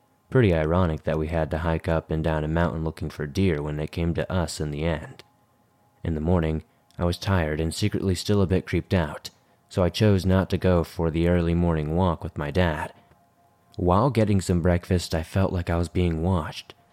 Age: 20-39